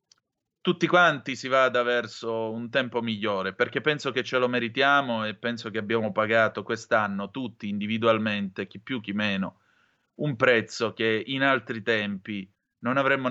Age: 30-49